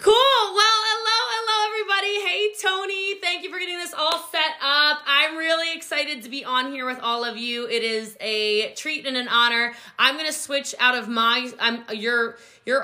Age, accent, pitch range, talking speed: 20-39, American, 210-275 Hz, 195 wpm